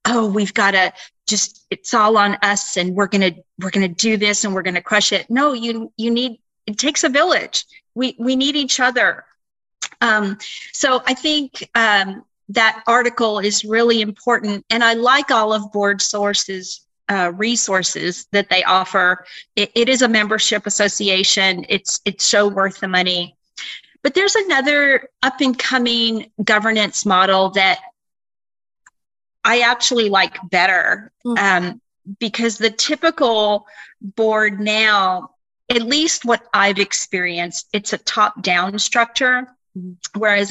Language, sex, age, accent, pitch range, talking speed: English, female, 40-59, American, 195-235 Hz, 150 wpm